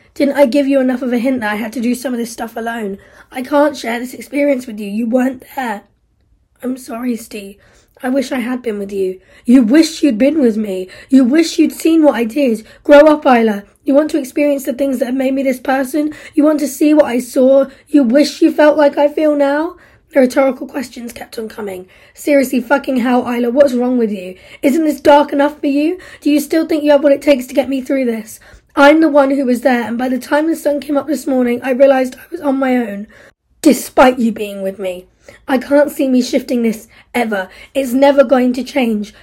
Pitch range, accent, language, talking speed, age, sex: 240-285 Hz, British, English, 235 wpm, 20-39, female